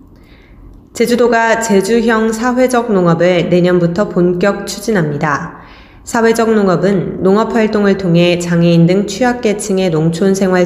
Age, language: 20-39, Korean